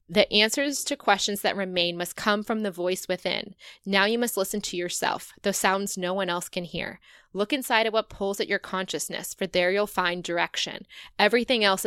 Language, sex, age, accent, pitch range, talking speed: English, female, 20-39, American, 185-220 Hz, 200 wpm